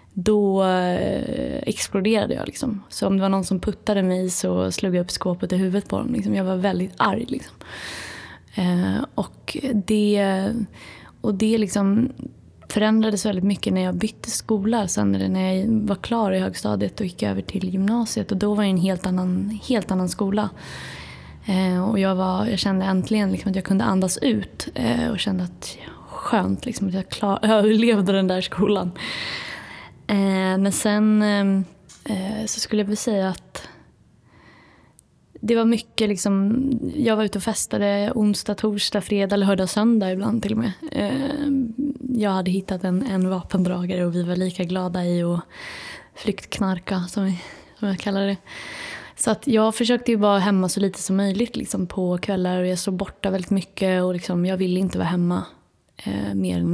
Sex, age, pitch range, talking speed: female, 20-39, 185-215 Hz, 170 wpm